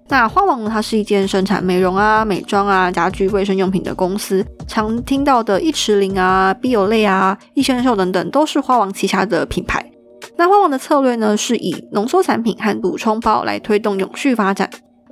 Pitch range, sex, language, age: 190-245 Hz, female, Chinese, 20-39